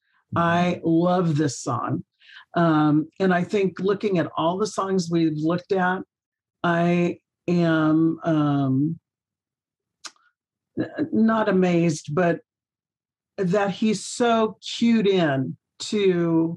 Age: 50-69